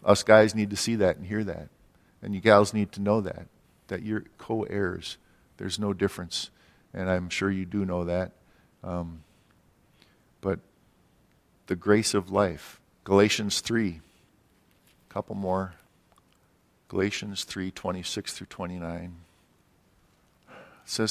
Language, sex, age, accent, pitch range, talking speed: English, male, 50-69, American, 90-105 Hz, 120 wpm